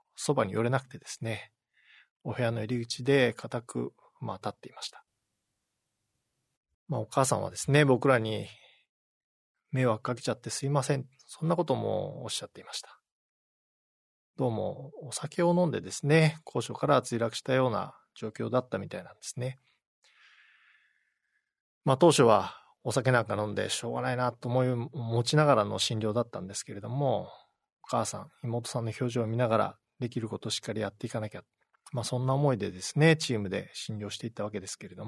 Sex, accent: male, native